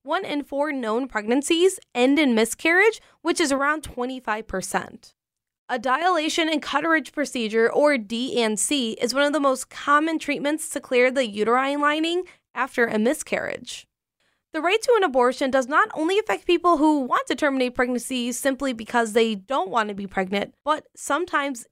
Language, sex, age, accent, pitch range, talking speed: English, female, 20-39, American, 235-305 Hz, 165 wpm